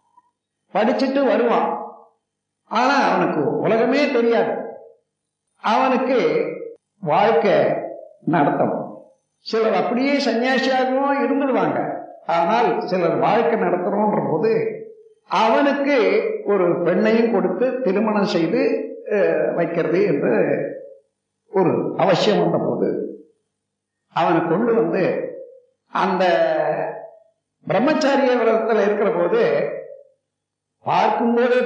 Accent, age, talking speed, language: native, 50-69, 70 wpm, Tamil